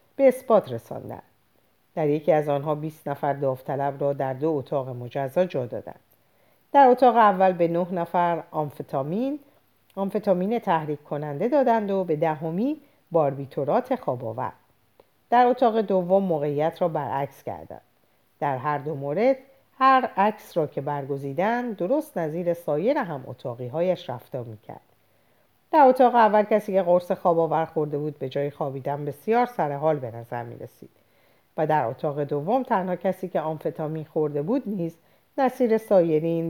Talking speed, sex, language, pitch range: 145 wpm, female, Persian, 140-195 Hz